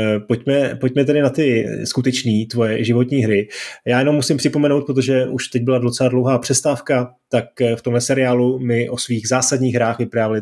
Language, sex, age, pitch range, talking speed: Czech, male, 30-49, 115-140 Hz, 175 wpm